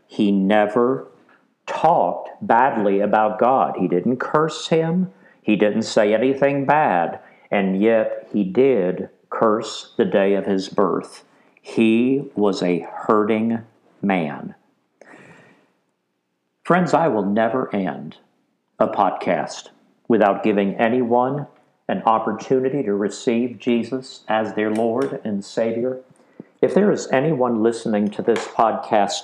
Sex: male